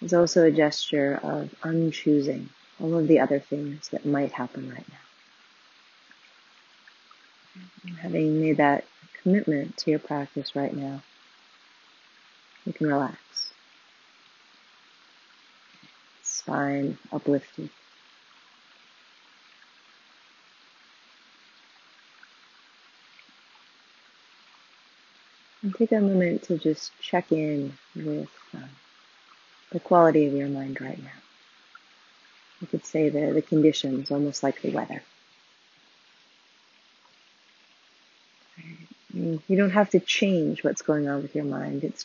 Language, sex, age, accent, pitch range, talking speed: English, female, 40-59, American, 140-165 Hz, 100 wpm